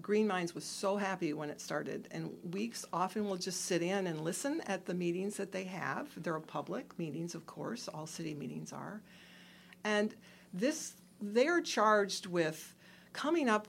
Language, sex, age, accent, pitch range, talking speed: English, female, 60-79, American, 170-205 Hz, 175 wpm